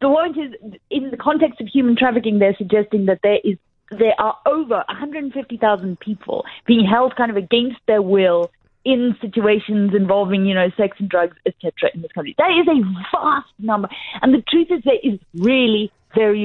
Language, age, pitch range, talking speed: English, 30-49, 205-255 Hz, 190 wpm